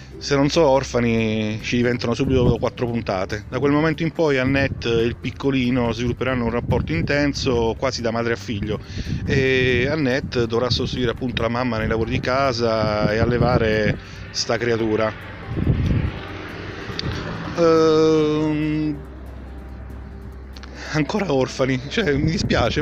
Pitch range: 115-160 Hz